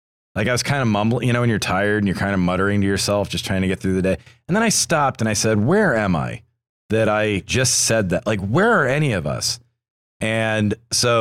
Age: 40-59